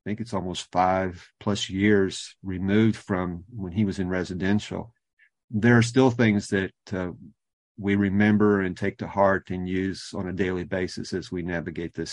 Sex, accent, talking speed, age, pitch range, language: male, American, 180 wpm, 40-59, 95-115 Hz, English